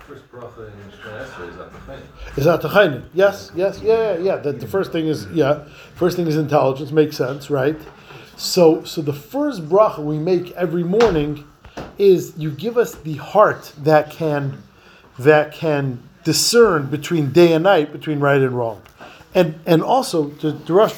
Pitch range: 145-190 Hz